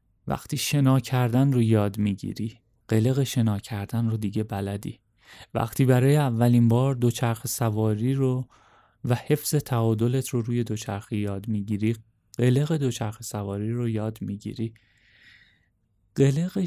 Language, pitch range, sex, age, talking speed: Persian, 110-135 Hz, male, 30-49, 120 wpm